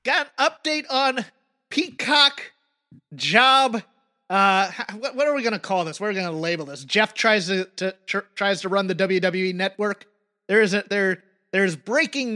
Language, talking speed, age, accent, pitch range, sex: English, 175 wpm, 30-49, American, 185-250 Hz, male